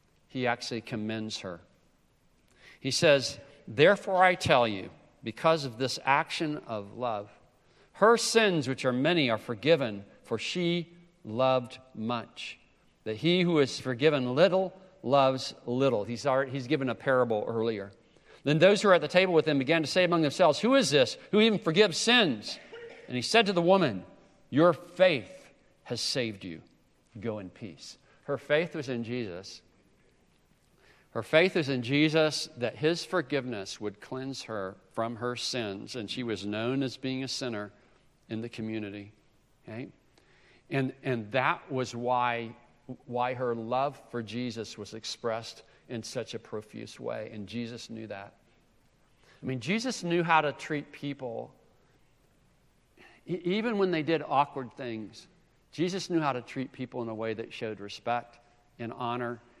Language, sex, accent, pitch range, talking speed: English, male, American, 115-160 Hz, 155 wpm